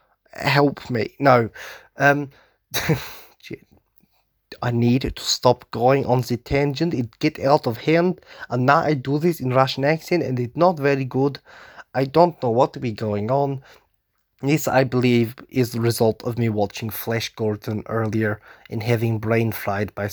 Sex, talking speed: male, 165 wpm